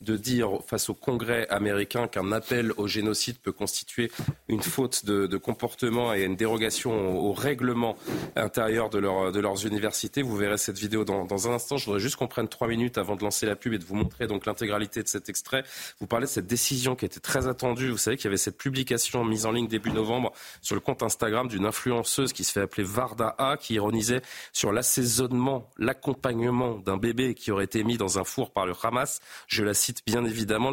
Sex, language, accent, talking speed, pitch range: male, French, French, 220 wpm, 105-125 Hz